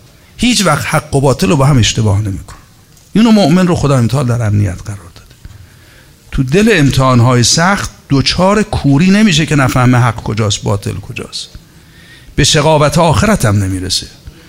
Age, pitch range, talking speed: 50-69, 105-135 Hz, 155 wpm